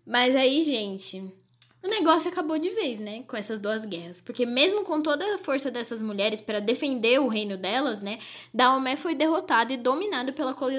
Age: 10-29